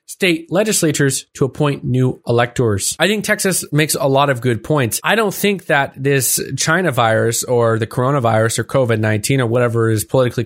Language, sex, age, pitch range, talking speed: English, male, 20-39, 125-160 Hz, 180 wpm